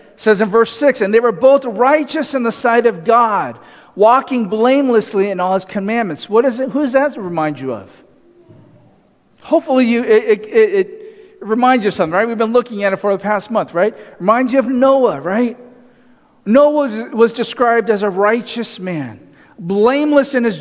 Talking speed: 195 wpm